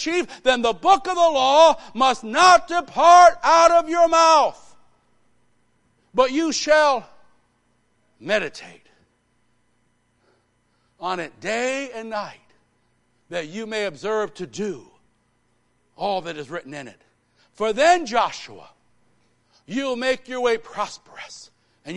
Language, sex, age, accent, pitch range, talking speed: English, male, 60-79, American, 195-260 Hz, 120 wpm